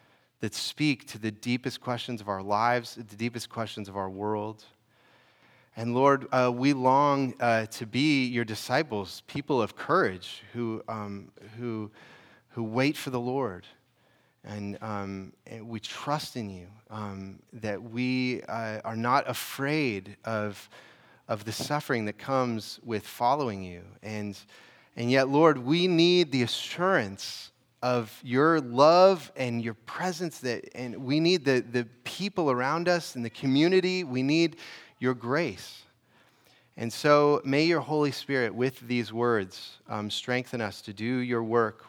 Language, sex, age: English, male, 30-49